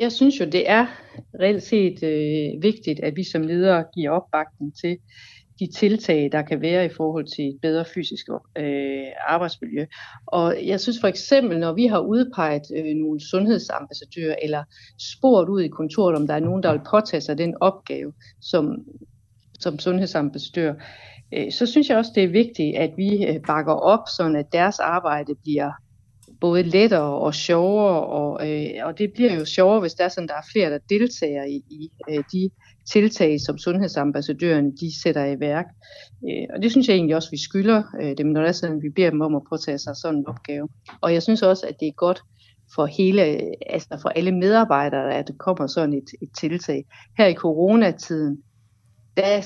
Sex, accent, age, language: female, native, 60-79, Danish